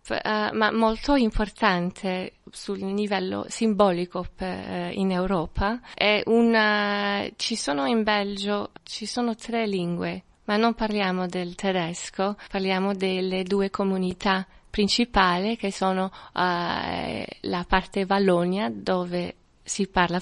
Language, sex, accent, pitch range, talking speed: Italian, female, native, 180-210 Hz, 120 wpm